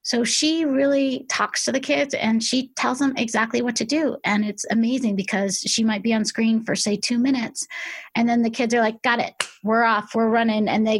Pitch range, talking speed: 210-240 Hz, 230 wpm